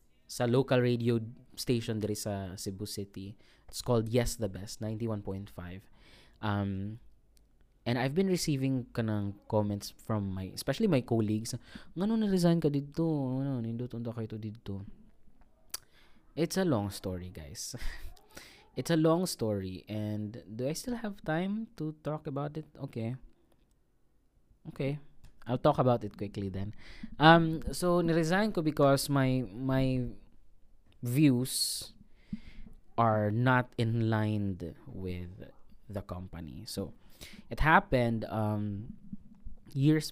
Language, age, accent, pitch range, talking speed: Filipino, 20-39, native, 105-145 Hz, 110 wpm